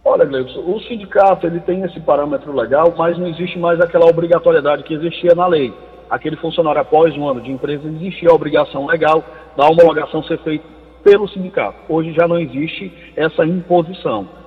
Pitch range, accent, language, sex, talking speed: 155-195 Hz, Brazilian, Portuguese, male, 180 wpm